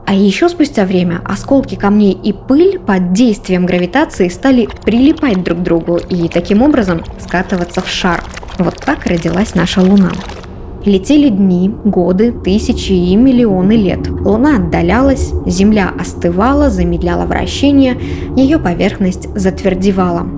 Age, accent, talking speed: 20-39, native, 125 wpm